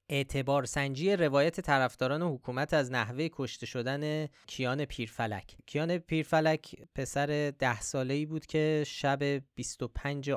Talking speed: 115 wpm